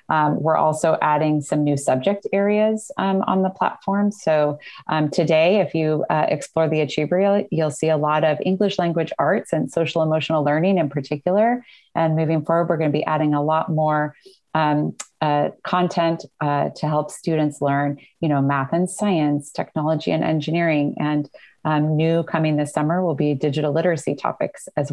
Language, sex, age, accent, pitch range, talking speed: English, female, 30-49, American, 145-170 Hz, 180 wpm